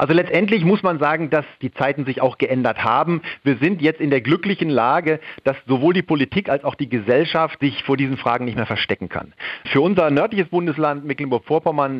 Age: 40-59